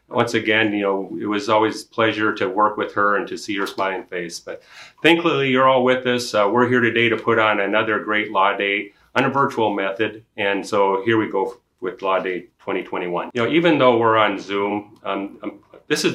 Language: English